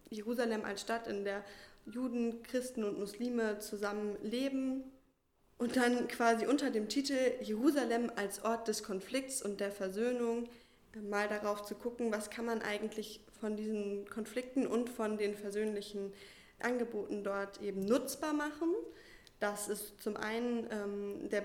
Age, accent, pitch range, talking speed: 20-39, German, 200-235 Hz, 145 wpm